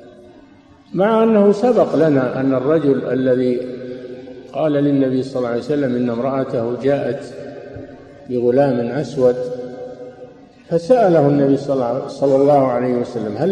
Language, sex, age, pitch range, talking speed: Arabic, male, 50-69, 125-185 Hz, 110 wpm